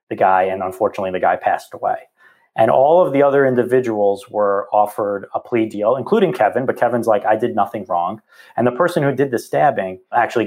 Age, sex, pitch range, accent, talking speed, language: 30-49, male, 100-125 Hz, American, 205 wpm, English